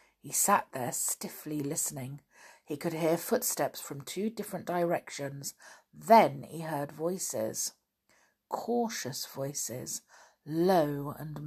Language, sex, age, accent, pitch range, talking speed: English, female, 50-69, British, 150-180 Hz, 110 wpm